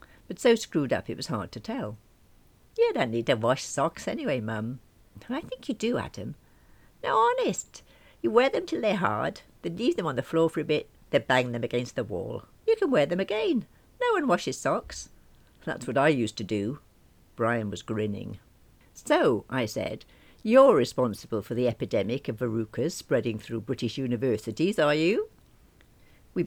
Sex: female